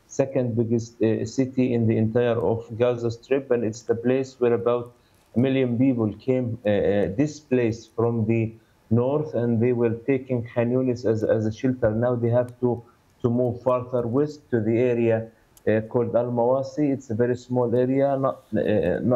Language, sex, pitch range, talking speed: English, male, 115-130 Hz, 170 wpm